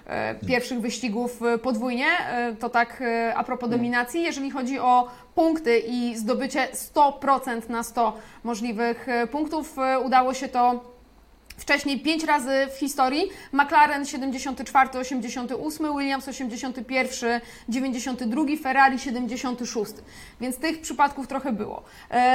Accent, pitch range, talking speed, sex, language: native, 240-280 Hz, 110 wpm, female, Polish